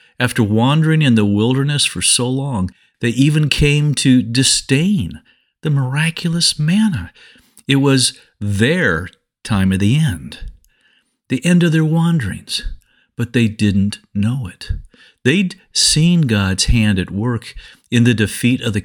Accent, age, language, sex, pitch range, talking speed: American, 50-69, English, male, 100-155 Hz, 140 wpm